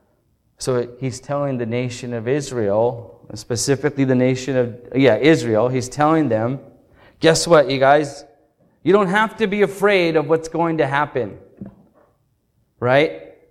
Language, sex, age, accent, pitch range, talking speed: English, male, 30-49, American, 130-175 Hz, 140 wpm